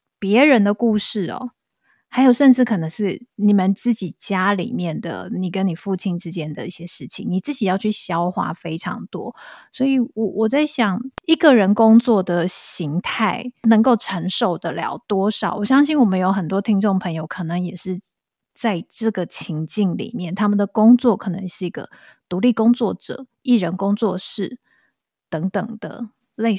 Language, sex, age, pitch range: Chinese, female, 20-39, 185-245 Hz